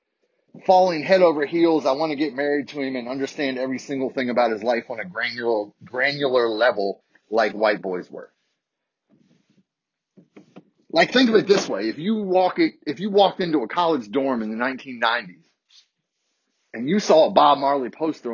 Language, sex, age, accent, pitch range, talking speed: English, male, 30-49, American, 135-205 Hz, 175 wpm